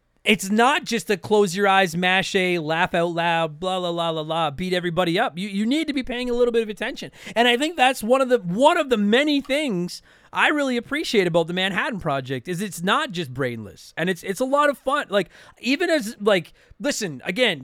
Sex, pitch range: male, 165-230 Hz